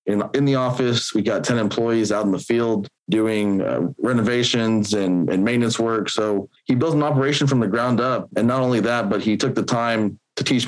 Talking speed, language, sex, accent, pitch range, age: 215 wpm, English, male, American, 105-125 Hz, 20-39